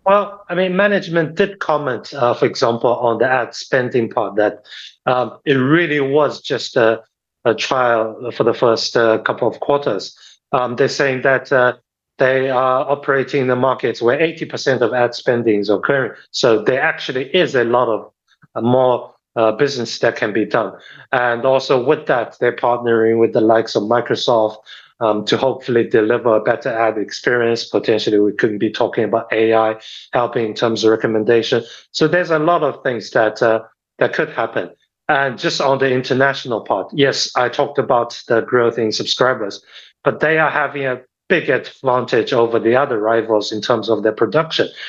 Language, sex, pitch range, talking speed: English, male, 115-140 Hz, 180 wpm